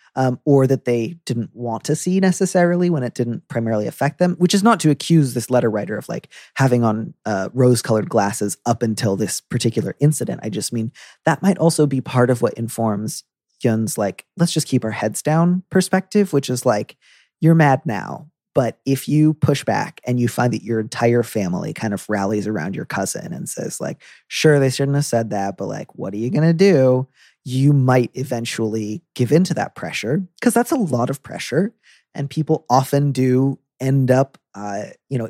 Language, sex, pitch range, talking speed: English, male, 115-155 Hz, 200 wpm